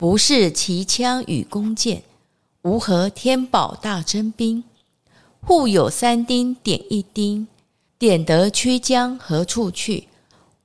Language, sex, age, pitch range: Chinese, female, 50-69, 180-245 Hz